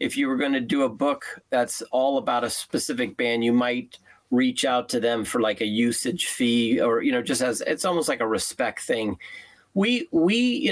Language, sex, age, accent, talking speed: English, male, 40-59, American, 220 wpm